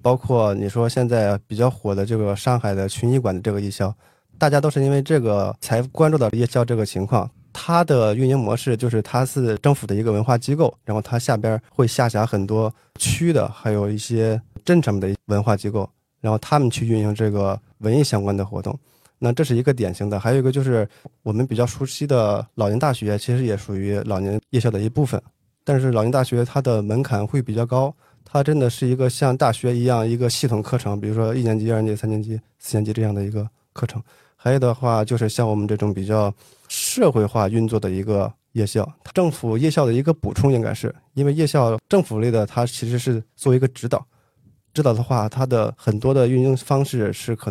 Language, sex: Chinese, male